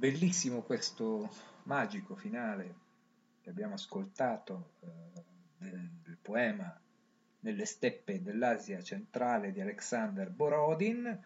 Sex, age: male, 50-69